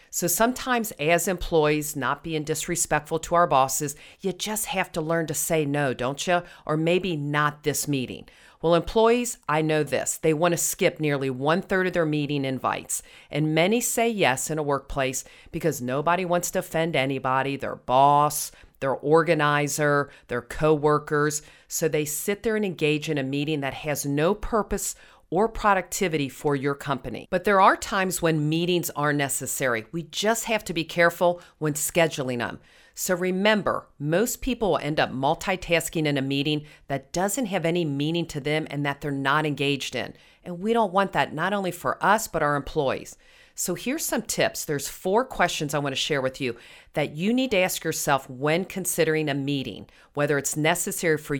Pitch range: 145-180 Hz